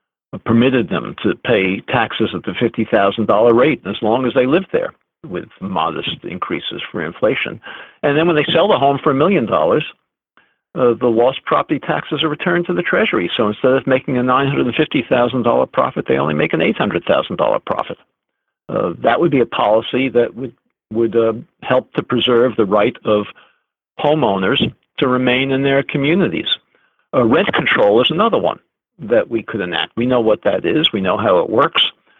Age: 50-69